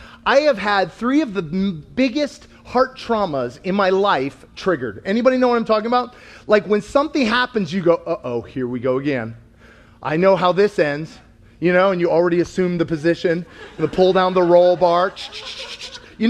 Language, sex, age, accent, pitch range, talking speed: English, male, 30-49, American, 175-285 Hz, 190 wpm